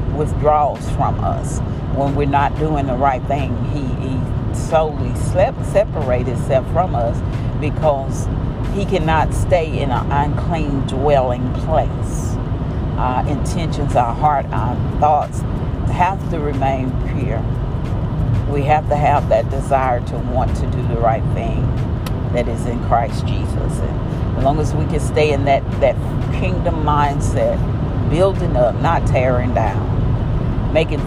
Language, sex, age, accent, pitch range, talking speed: English, female, 50-69, American, 120-140 Hz, 135 wpm